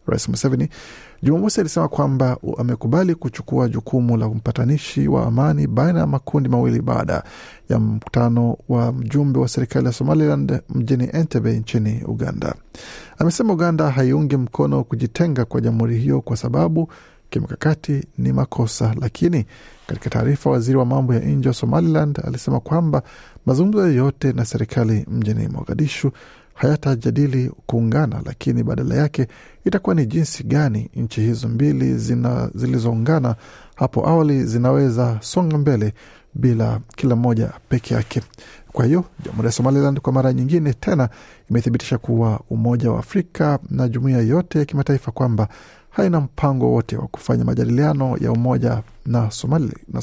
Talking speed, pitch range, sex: 135 wpm, 115-145 Hz, male